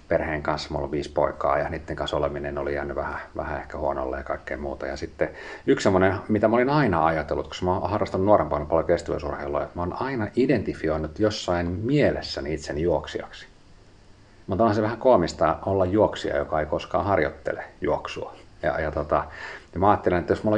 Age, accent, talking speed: 40-59, native, 185 wpm